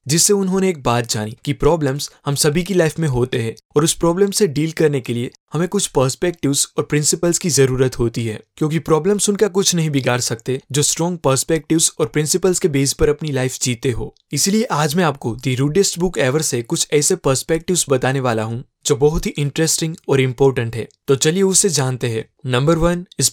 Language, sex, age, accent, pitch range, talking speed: Hindi, male, 20-39, native, 130-170 Hz, 205 wpm